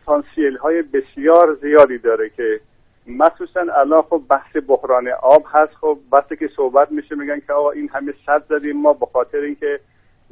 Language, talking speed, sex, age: Persian, 170 wpm, male, 50-69